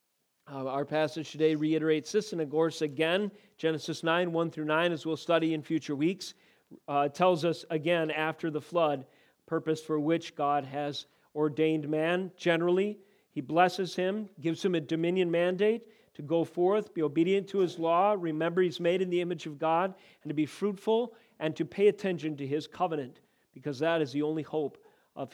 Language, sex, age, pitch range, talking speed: English, male, 40-59, 150-185 Hz, 180 wpm